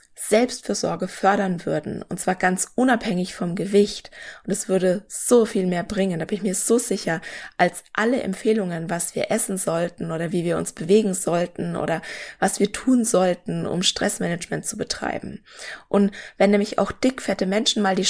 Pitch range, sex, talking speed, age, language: 190-220 Hz, female, 170 wpm, 20-39, German